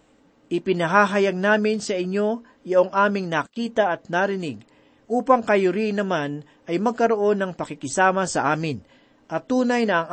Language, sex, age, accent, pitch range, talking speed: Filipino, male, 40-59, native, 155-210 Hz, 135 wpm